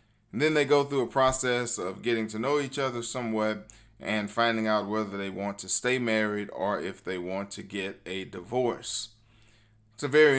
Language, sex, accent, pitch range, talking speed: English, male, American, 105-125 Hz, 195 wpm